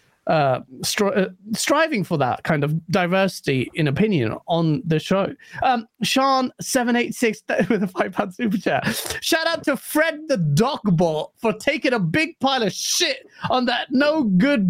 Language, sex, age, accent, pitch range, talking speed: English, male, 30-49, British, 185-265 Hz, 170 wpm